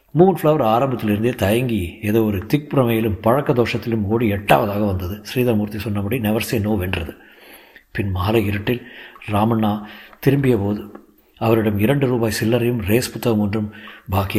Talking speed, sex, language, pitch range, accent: 130 wpm, male, Tamil, 105-140 Hz, native